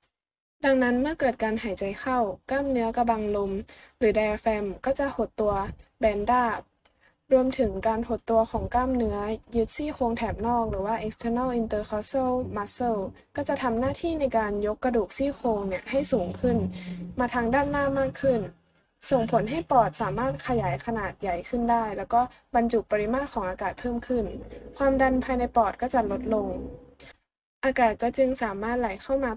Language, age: Thai, 20-39